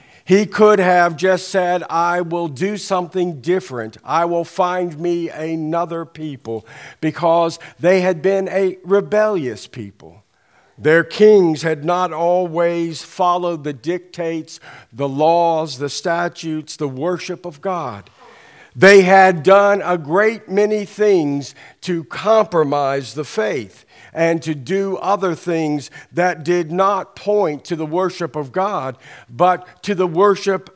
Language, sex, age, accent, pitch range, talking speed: English, male, 50-69, American, 145-180 Hz, 135 wpm